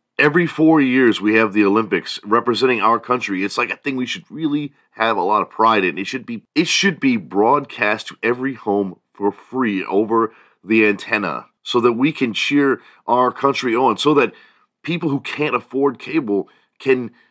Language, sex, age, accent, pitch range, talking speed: English, male, 40-59, American, 105-160 Hz, 185 wpm